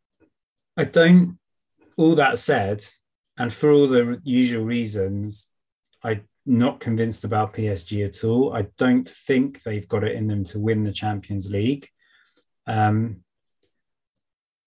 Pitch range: 100-120 Hz